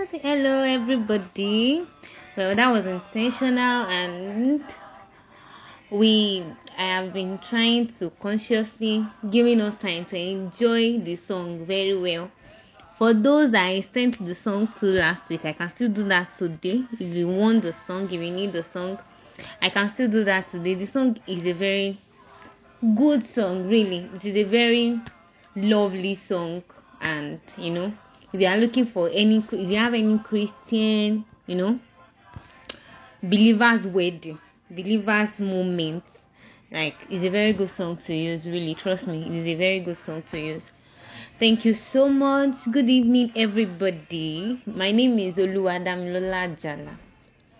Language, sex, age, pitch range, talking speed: English, female, 20-39, 180-225 Hz, 155 wpm